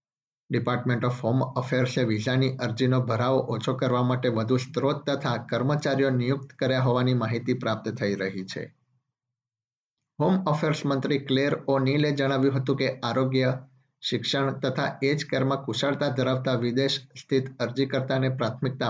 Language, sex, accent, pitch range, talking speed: Gujarati, male, native, 120-135 Hz, 125 wpm